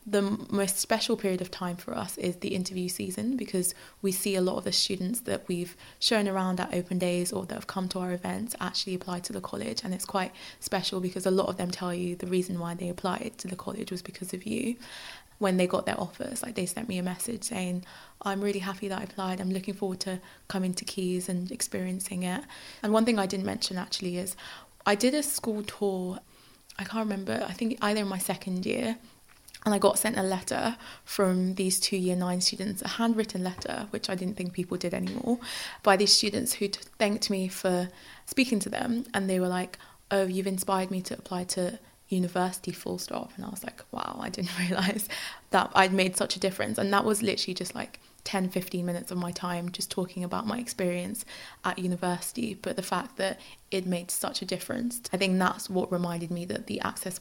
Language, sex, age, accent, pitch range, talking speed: English, female, 20-39, British, 185-210 Hz, 220 wpm